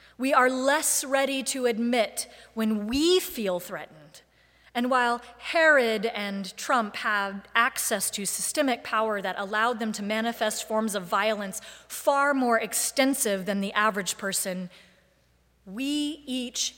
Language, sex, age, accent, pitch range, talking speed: English, female, 30-49, American, 190-235 Hz, 130 wpm